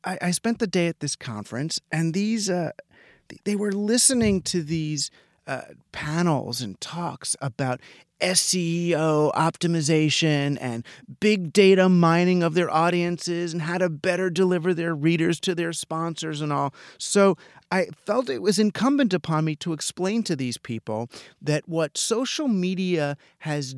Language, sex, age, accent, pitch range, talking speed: English, male, 30-49, American, 145-195 Hz, 150 wpm